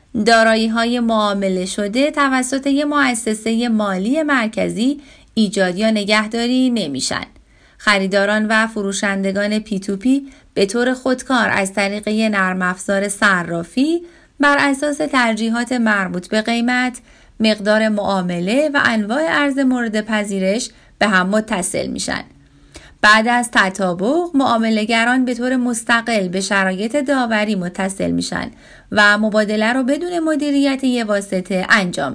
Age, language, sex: 30-49, Persian, female